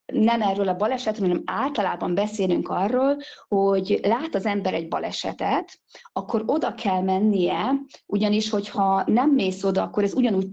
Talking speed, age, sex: 150 wpm, 40-59, female